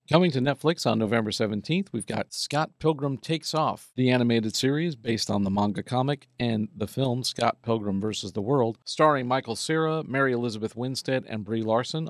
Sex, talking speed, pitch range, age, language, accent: male, 185 wpm, 110-140 Hz, 50-69, English, American